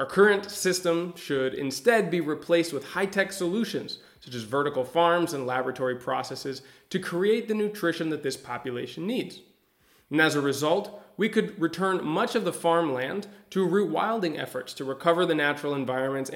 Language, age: English, 20-39